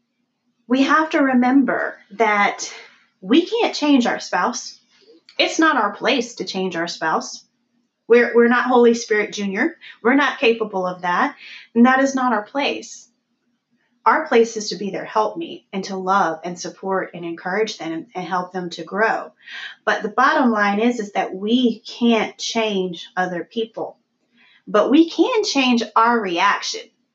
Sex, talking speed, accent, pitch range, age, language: female, 165 wpm, American, 195-250 Hz, 30-49, English